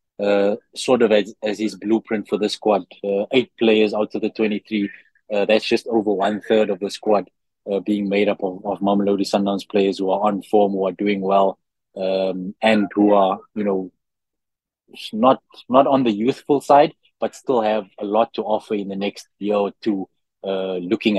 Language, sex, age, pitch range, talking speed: English, male, 20-39, 100-110 Hz, 195 wpm